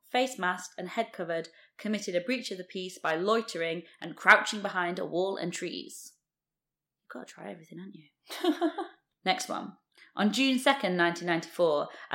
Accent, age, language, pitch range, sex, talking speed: British, 20-39, English, 170-200 Hz, female, 160 wpm